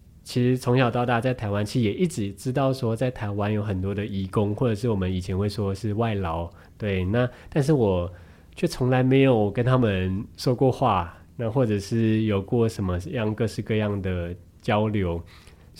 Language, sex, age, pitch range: Chinese, male, 20-39, 95-125 Hz